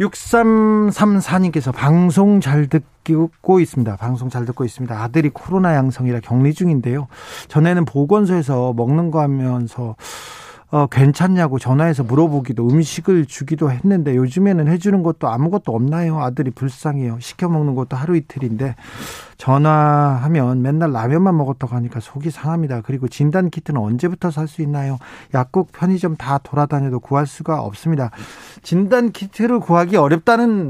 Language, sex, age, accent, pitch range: Korean, male, 40-59, native, 130-180 Hz